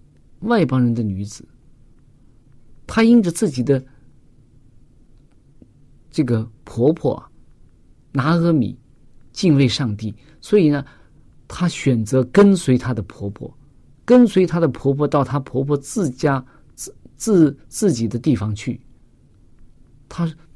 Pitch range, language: 120-145 Hz, Chinese